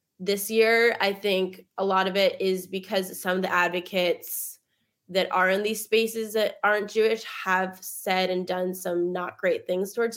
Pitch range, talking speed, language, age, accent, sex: 185-220 Hz, 185 wpm, English, 20-39, American, female